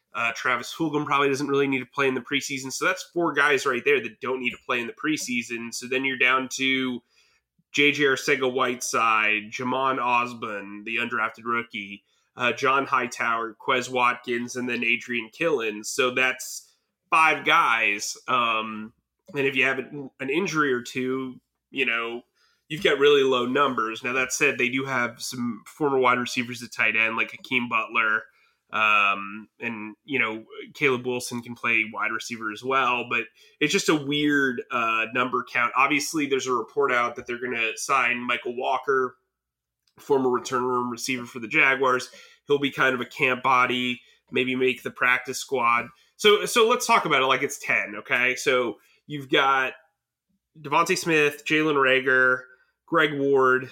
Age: 20-39